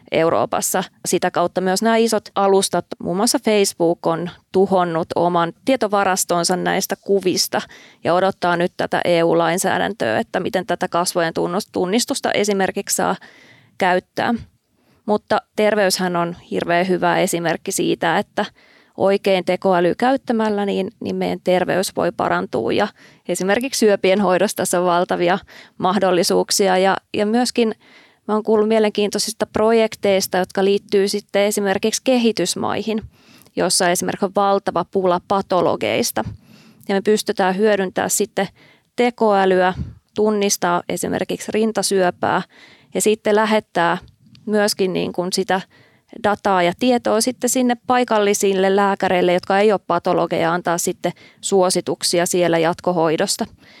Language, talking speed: Finnish, 120 wpm